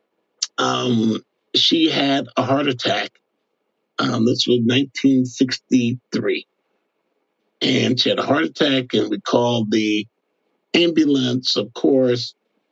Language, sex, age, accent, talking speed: English, male, 50-69, American, 110 wpm